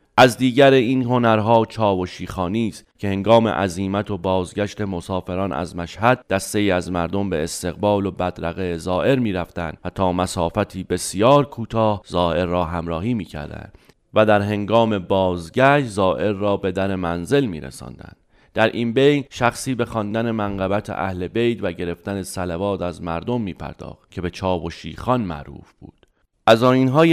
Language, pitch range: Persian, 90-110 Hz